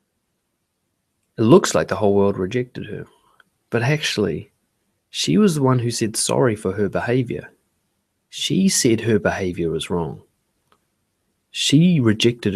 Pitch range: 105-140 Hz